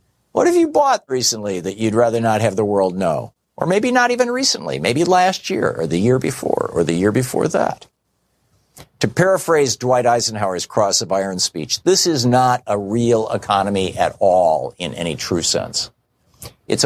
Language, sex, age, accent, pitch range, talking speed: English, male, 50-69, American, 110-160 Hz, 180 wpm